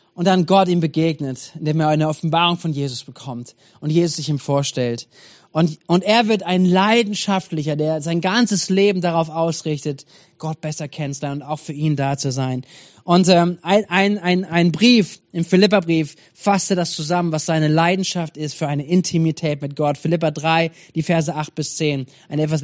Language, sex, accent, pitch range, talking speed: German, male, German, 155-195 Hz, 180 wpm